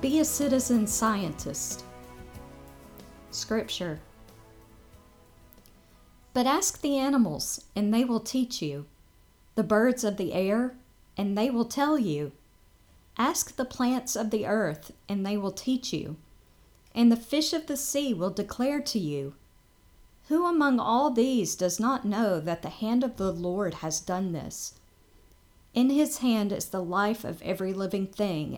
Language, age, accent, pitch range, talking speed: English, 40-59, American, 140-235 Hz, 150 wpm